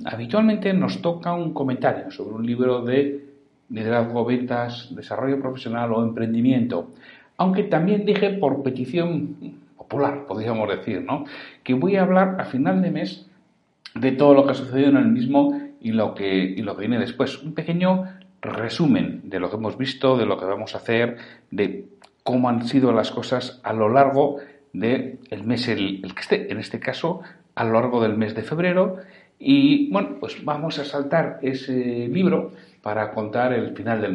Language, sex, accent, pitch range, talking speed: Spanish, male, Spanish, 115-155 Hz, 175 wpm